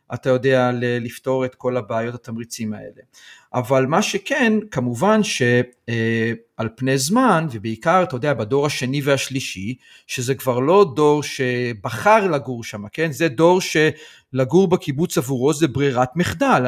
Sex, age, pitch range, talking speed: male, 40-59, 125-160 Hz, 135 wpm